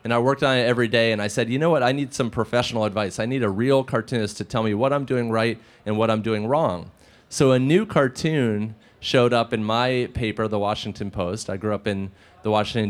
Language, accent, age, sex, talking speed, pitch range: English, American, 30-49, male, 245 wpm, 110-125 Hz